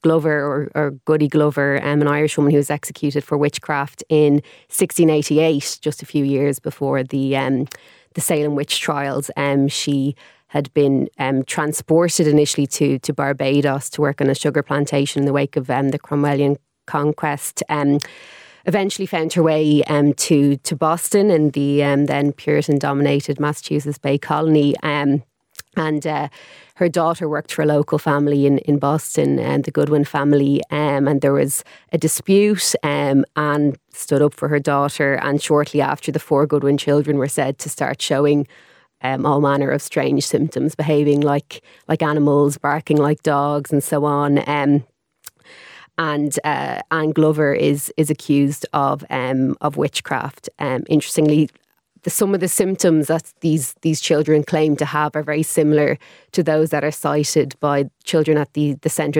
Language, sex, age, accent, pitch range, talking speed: English, female, 20-39, Irish, 140-155 Hz, 170 wpm